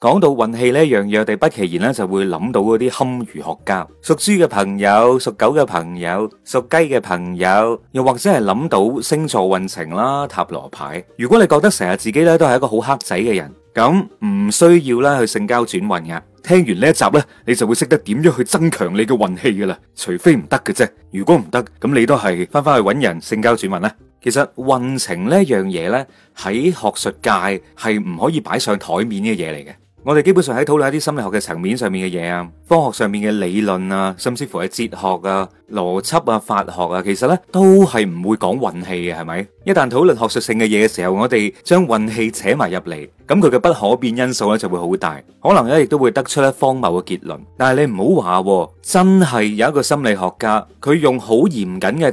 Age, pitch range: 30-49, 95-145 Hz